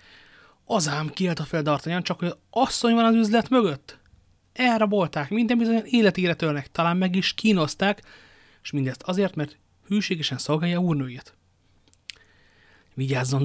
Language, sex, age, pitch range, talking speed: Hungarian, male, 30-49, 135-185 Hz, 130 wpm